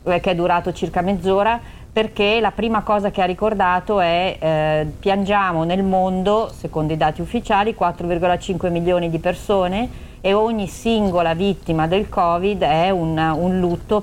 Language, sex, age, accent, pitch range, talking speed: Italian, female, 40-59, native, 150-190 Hz, 150 wpm